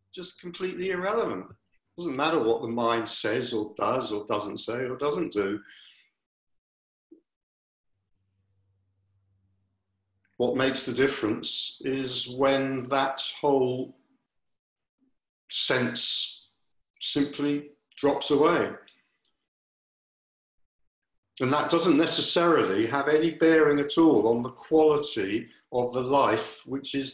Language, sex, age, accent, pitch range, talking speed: English, male, 60-79, British, 110-140 Hz, 105 wpm